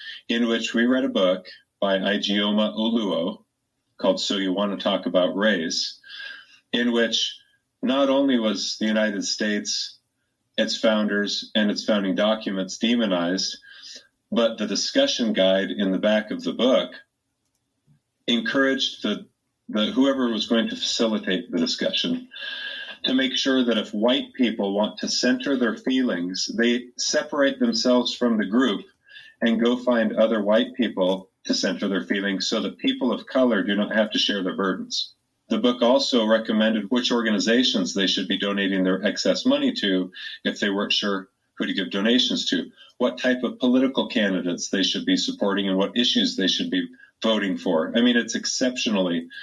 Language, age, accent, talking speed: English, 40-59, American, 165 wpm